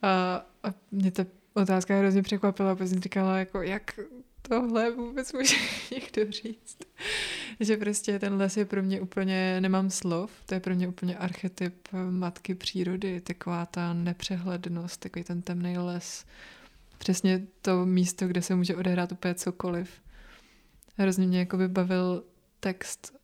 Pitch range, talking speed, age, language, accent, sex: 175-190 Hz, 140 wpm, 20-39, Czech, native, female